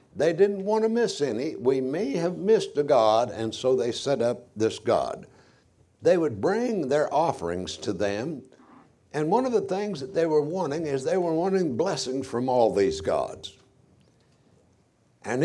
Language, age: English, 60-79